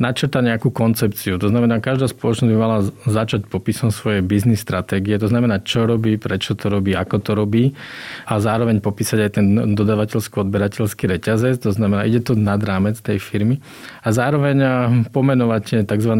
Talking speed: 165 wpm